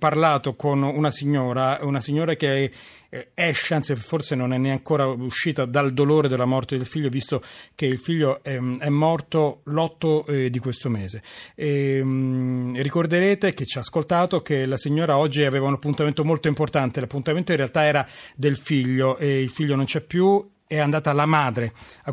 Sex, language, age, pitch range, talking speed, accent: male, Italian, 40-59, 135-160 Hz, 185 wpm, native